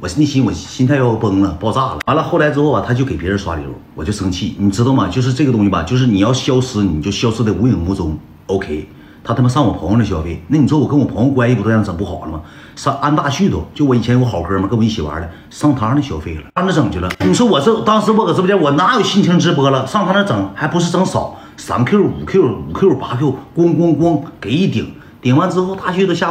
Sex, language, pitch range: male, Chinese, 95-145 Hz